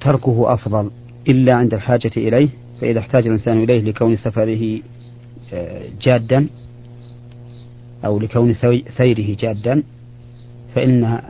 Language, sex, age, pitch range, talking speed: Arabic, male, 40-59, 115-120 Hz, 95 wpm